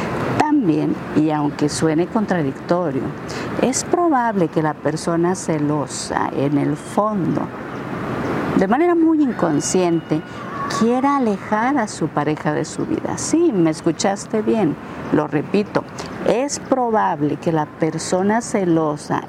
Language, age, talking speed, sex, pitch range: Spanish, 50-69, 115 wpm, female, 160-245 Hz